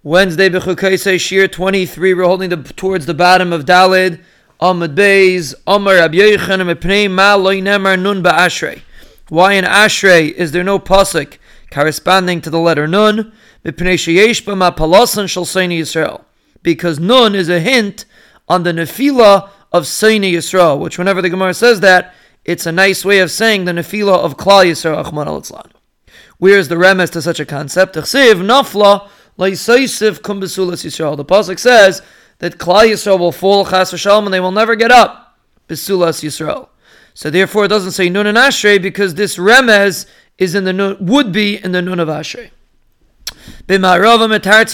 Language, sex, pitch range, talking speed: English, male, 175-210 Hz, 130 wpm